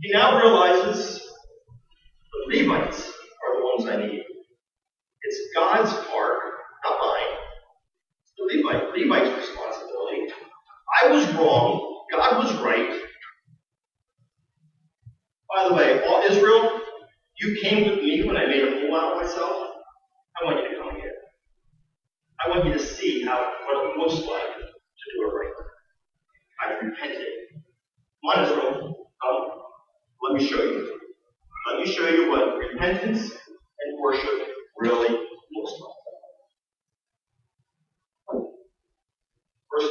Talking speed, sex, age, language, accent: 125 wpm, male, 30-49, English, American